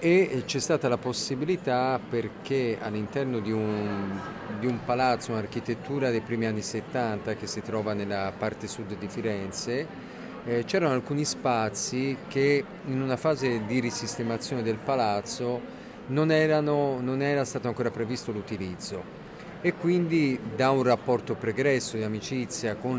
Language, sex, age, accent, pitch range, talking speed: Italian, male, 40-59, native, 110-130 Hz, 135 wpm